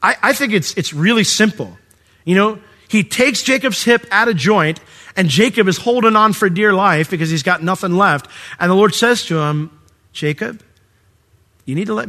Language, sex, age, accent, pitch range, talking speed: English, male, 40-59, American, 115-160 Hz, 200 wpm